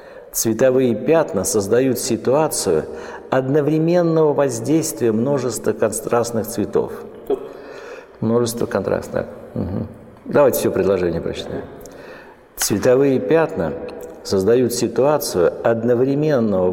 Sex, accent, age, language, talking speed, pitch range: male, native, 60-79, Russian, 70 wpm, 120-170 Hz